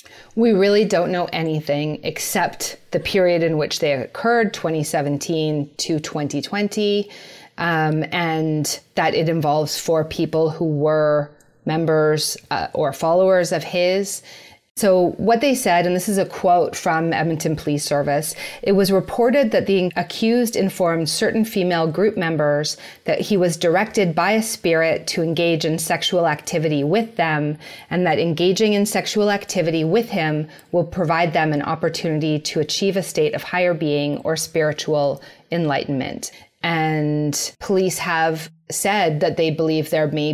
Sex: female